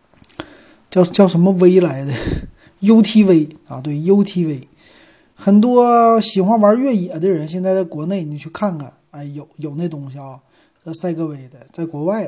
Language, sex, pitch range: Chinese, male, 150-210 Hz